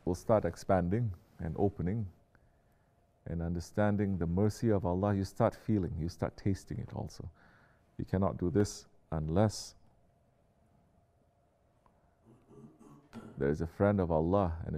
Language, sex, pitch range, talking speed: English, male, 85-105 Hz, 125 wpm